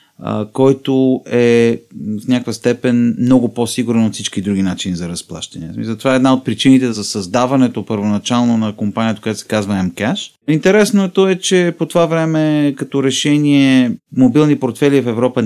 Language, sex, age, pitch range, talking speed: Bulgarian, male, 30-49, 110-130 Hz, 160 wpm